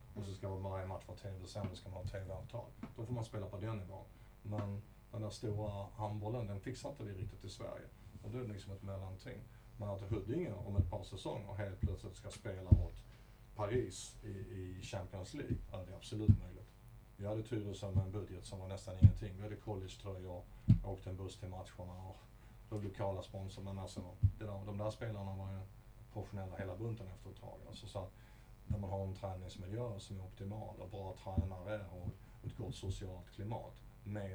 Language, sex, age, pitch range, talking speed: Swedish, male, 30-49, 95-110 Hz, 205 wpm